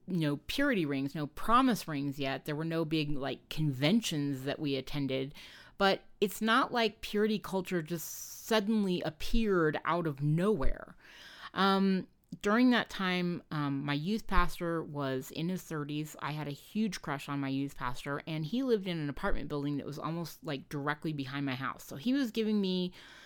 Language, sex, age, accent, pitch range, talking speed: English, female, 30-49, American, 145-195 Hz, 180 wpm